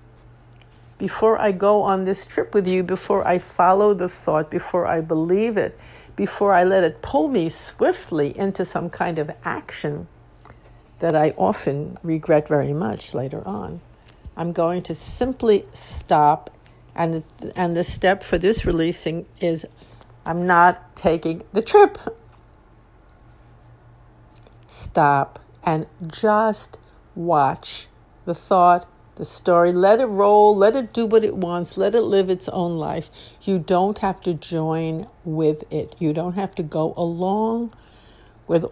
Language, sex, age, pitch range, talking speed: English, female, 60-79, 155-190 Hz, 145 wpm